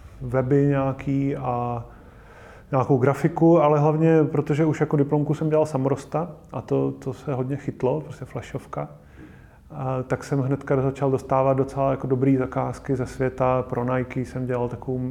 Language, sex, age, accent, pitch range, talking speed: Czech, male, 30-49, native, 120-135 Hz, 150 wpm